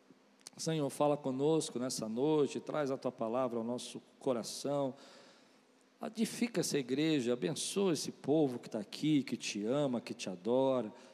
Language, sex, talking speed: Portuguese, male, 145 wpm